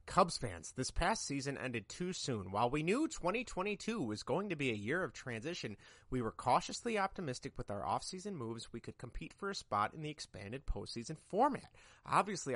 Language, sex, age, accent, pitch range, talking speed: English, male, 30-49, American, 110-165 Hz, 190 wpm